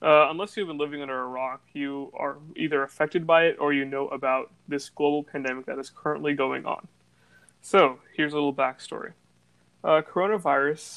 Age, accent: 20-39, American